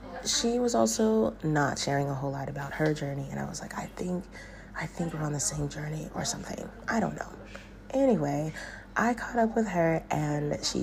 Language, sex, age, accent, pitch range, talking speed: English, female, 30-49, American, 145-170 Hz, 205 wpm